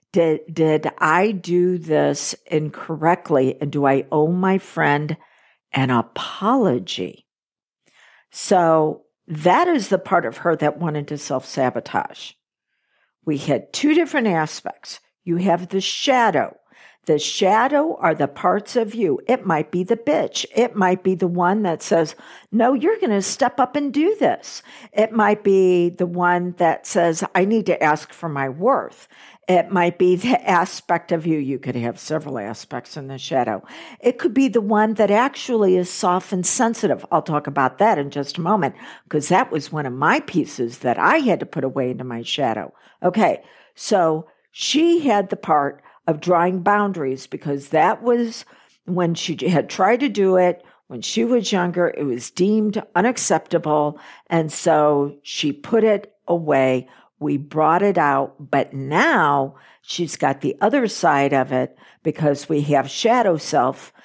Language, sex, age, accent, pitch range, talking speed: English, female, 60-79, American, 150-205 Hz, 165 wpm